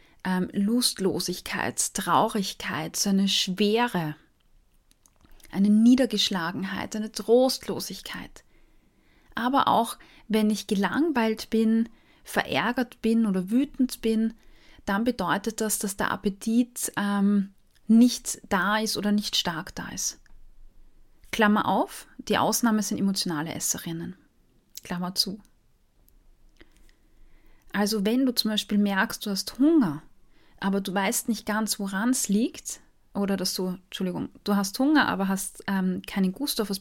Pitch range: 195-225 Hz